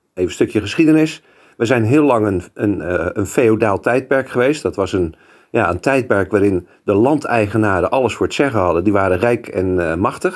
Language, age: Dutch, 40-59